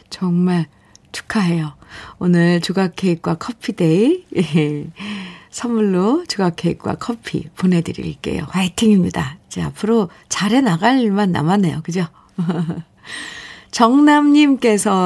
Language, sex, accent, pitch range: Korean, female, native, 175-225 Hz